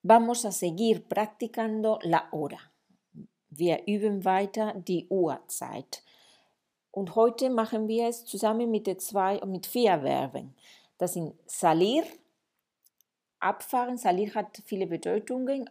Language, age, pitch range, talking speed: Spanish, 40-59, 180-230 Hz, 115 wpm